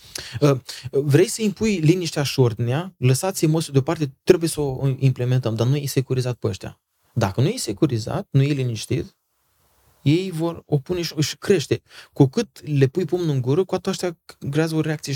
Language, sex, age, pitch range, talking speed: Romanian, male, 20-39, 120-160 Hz, 180 wpm